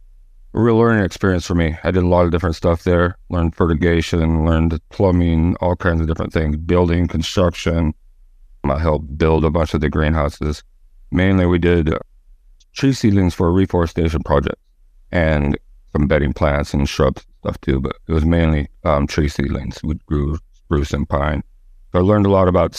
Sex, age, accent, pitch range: male, 40-59, American, 75-90 Hz